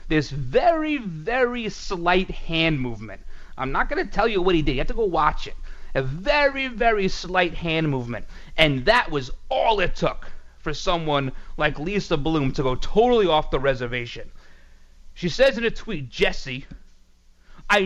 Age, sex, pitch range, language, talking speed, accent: 30-49, male, 120-180 Hz, English, 170 wpm, American